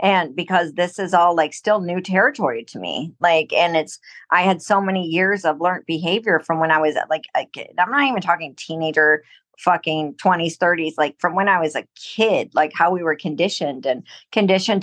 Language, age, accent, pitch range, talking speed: English, 50-69, American, 160-195 Hz, 205 wpm